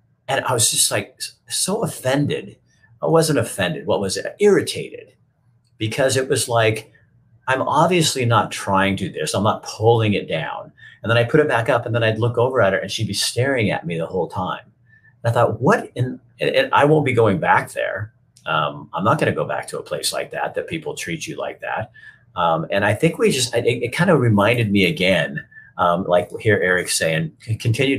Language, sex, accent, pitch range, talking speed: English, male, American, 100-130 Hz, 220 wpm